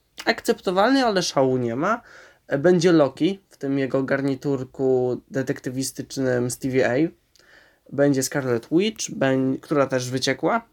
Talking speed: 115 wpm